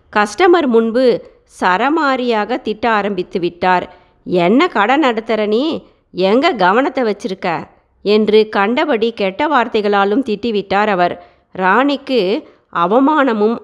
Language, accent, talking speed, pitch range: Tamil, native, 90 wpm, 195-255 Hz